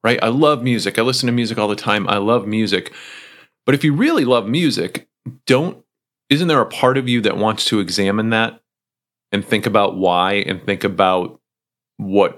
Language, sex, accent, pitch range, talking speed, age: English, male, American, 105-125 Hz, 195 wpm, 30-49